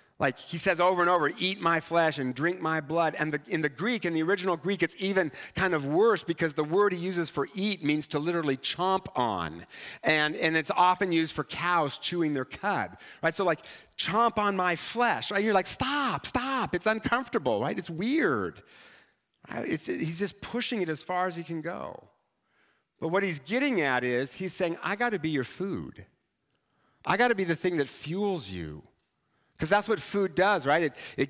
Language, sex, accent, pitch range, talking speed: English, male, American, 155-195 Hz, 210 wpm